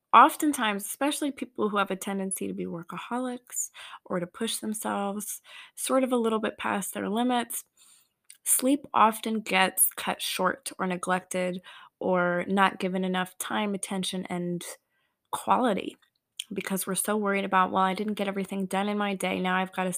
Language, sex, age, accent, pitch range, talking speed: English, female, 20-39, American, 185-220 Hz, 165 wpm